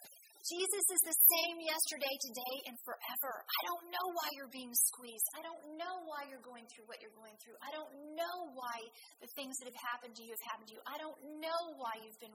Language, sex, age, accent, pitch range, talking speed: English, female, 40-59, American, 225-285 Hz, 230 wpm